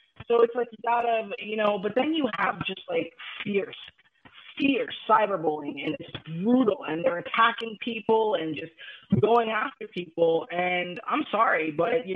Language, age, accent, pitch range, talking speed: English, 30-49, American, 160-215 Hz, 170 wpm